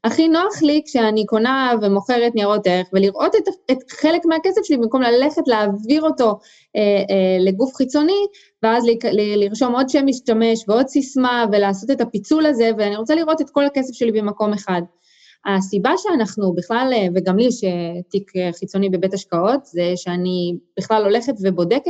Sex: female